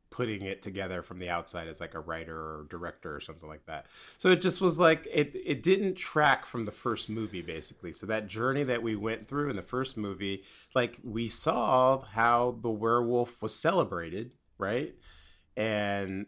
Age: 30-49